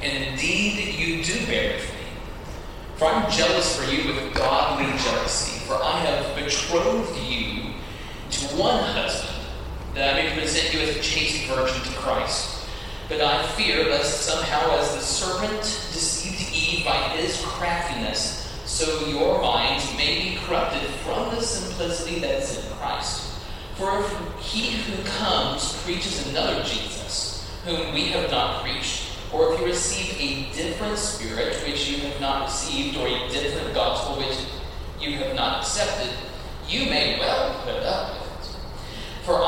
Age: 30-49